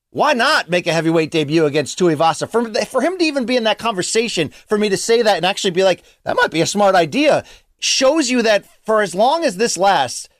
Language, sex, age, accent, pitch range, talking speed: English, male, 30-49, American, 165-230 Hz, 240 wpm